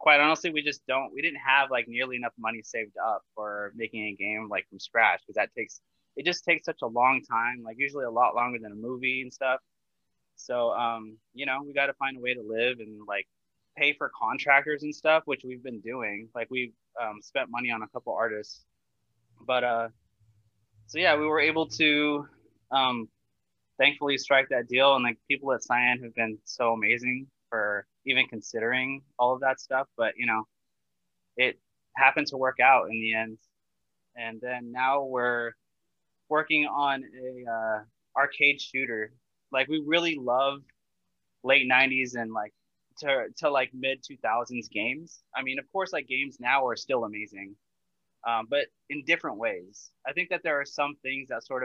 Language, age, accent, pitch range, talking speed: English, 20-39, American, 110-135 Hz, 185 wpm